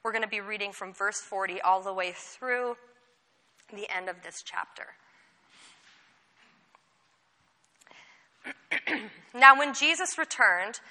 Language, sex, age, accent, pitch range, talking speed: English, female, 30-49, American, 205-295 Hz, 115 wpm